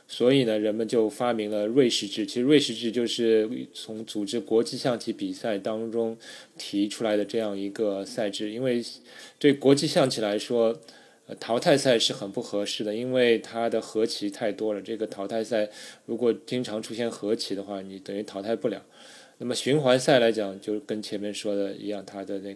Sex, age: male, 20-39